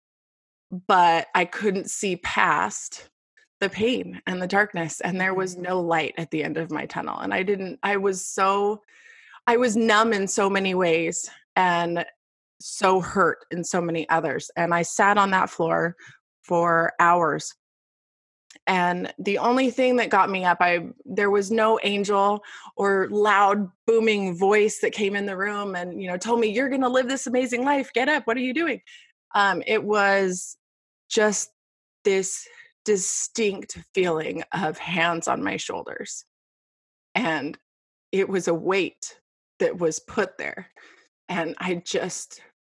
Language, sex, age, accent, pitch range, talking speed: English, female, 20-39, American, 175-215 Hz, 160 wpm